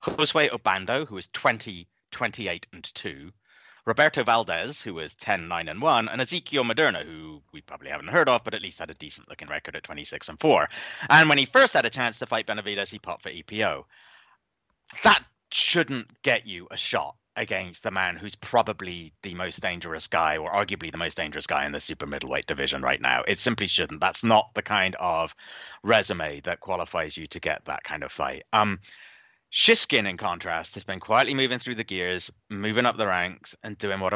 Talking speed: 200 wpm